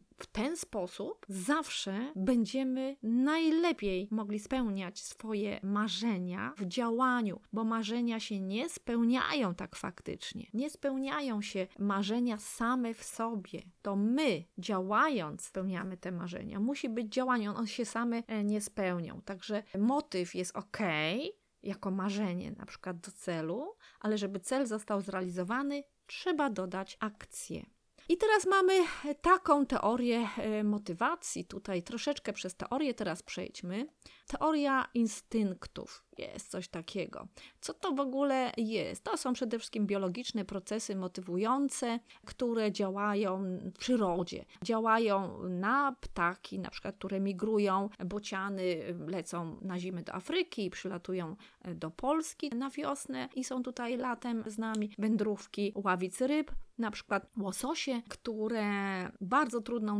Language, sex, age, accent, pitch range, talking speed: Polish, female, 20-39, native, 195-255 Hz, 125 wpm